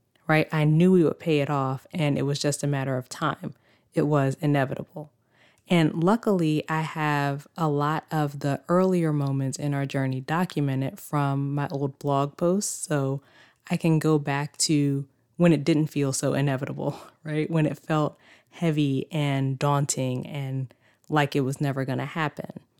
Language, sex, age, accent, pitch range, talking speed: English, female, 20-39, American, 140-165 Hz, 170 wpm